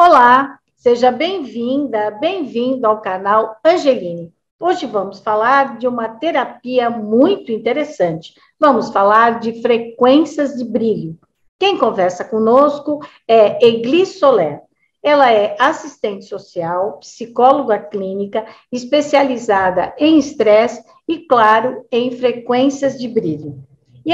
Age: 50-69